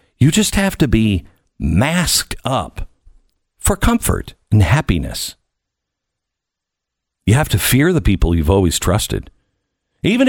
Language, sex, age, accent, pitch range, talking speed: English, male, 50-69, American, 110-180 Hz, 120 wpm